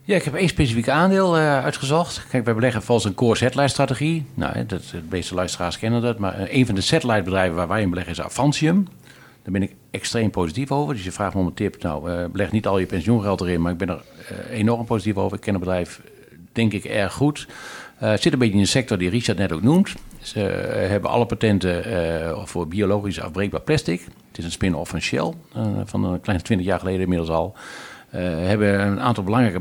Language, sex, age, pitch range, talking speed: Dutch, male, 50-69, 90-120 Hz, 225 wpm